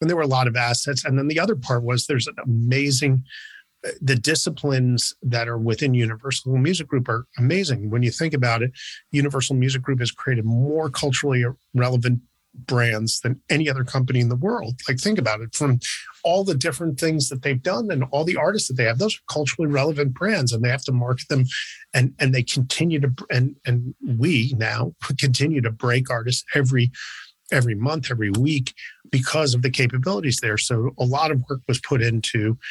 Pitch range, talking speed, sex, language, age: 120-145 Hz, 195 wpm, male, English, 40-59